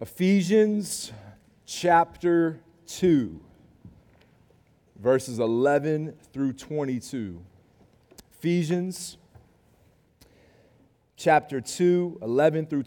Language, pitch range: English, 125-170 Hz